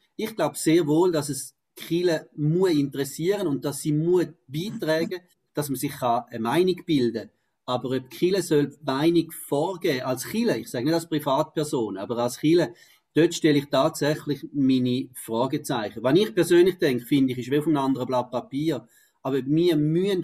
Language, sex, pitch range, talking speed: German, male, 135-165 Hz, 170 wpm